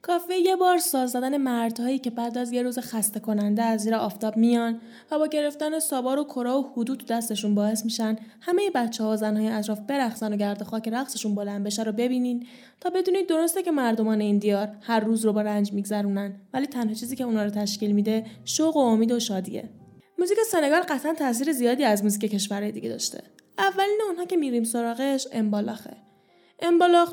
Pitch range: 220-285 Hz